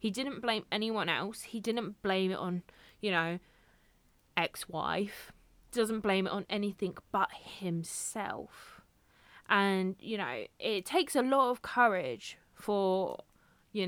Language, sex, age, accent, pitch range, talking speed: English, female, 20-39, British, 170-200 Hz, 135 wpm